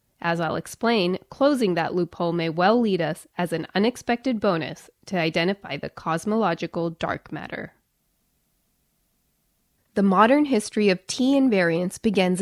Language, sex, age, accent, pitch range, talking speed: English, female, 20-39, American, 175-230 Hz, 125 wpm